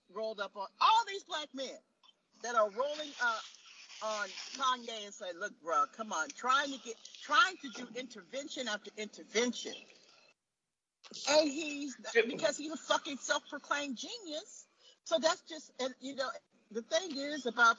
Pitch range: 230-315 Hz